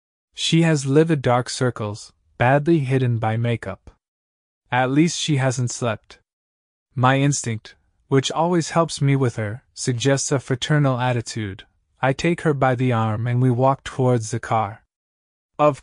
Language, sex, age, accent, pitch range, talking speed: Italian, male, 20-39, American, 110-140 Hz, 150 wpm